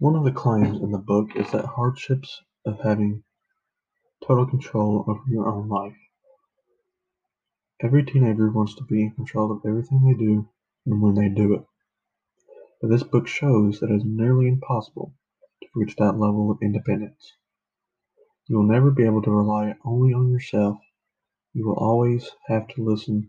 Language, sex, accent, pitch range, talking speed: English, male, American, 105-130 Hz, 165 wpm